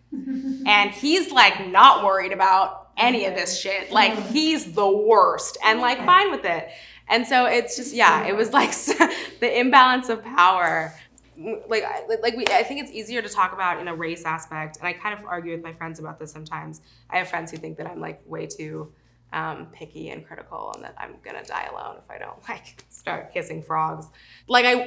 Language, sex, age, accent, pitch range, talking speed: English, female, 20-39, American, 170-250 Hz, 210 wpm